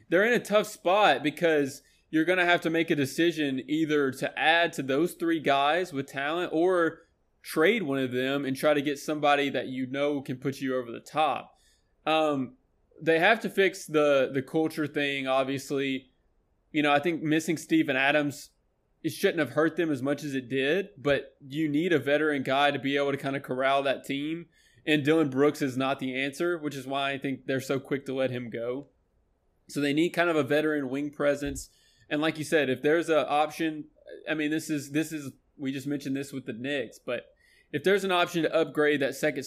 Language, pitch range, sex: English, 135-155 Hz, male